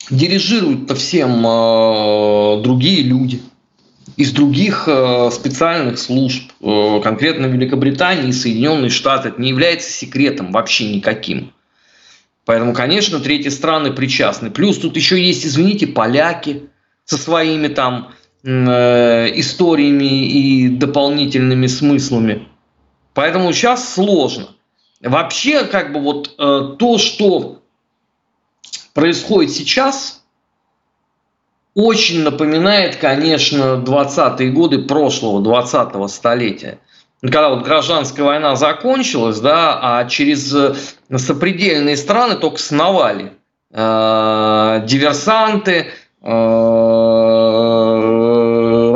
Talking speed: 95 wpm